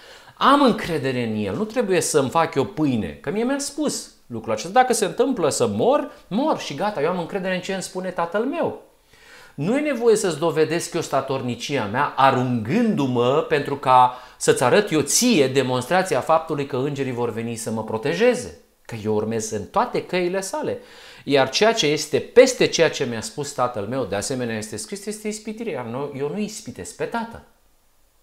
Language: Romanian